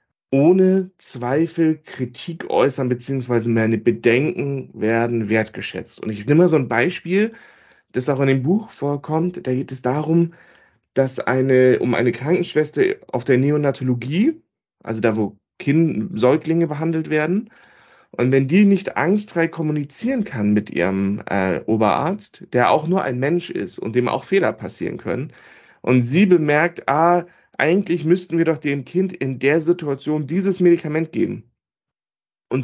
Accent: German